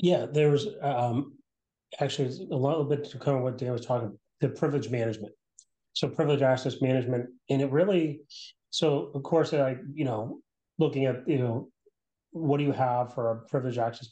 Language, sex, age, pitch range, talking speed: English, male, 30-49, 125-145 Hz, 190 wpm